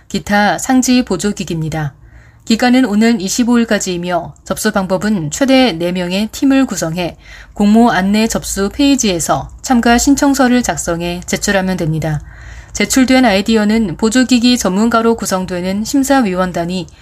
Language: Korean